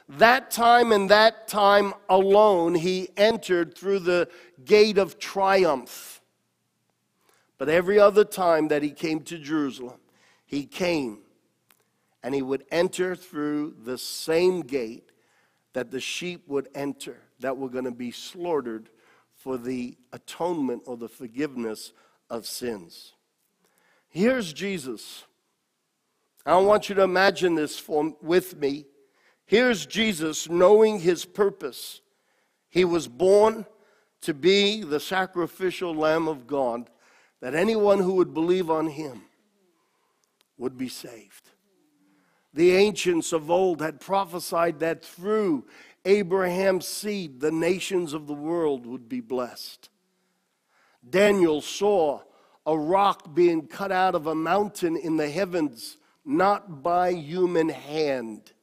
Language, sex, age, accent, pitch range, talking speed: English, male, 50-69, American, 150-195 Hz, 125 wpm